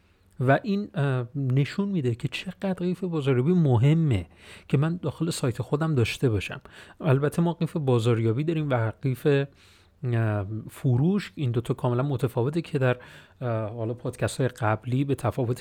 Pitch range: 115-160 Hz